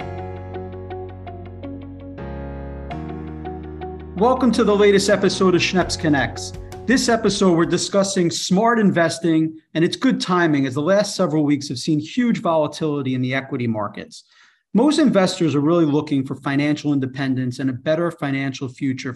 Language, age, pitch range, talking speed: English, 40-59, 135-185 Hz, 140 wpm